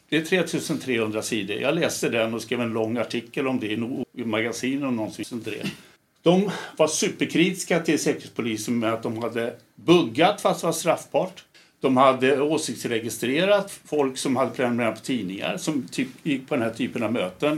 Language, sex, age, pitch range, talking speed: Swedish, male, 60-79, 120-155 Hz, 175 wpm